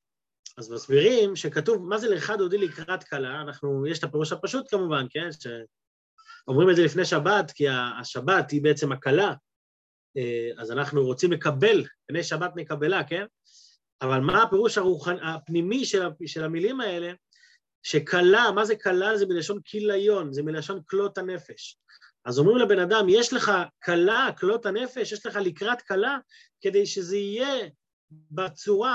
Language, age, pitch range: Hebrew, 30-49, 170-235 Hz